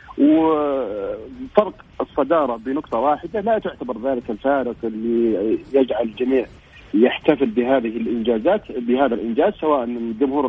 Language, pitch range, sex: Arabic, 120-160 Hz, male